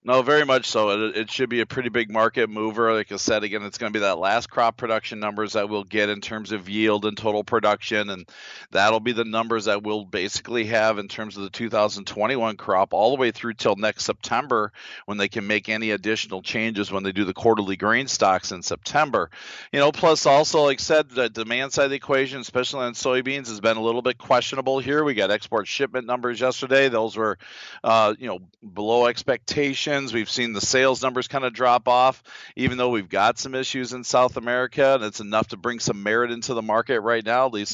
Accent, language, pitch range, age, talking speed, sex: American, English, 105-130 Hz, 40-59, 225 wpm, male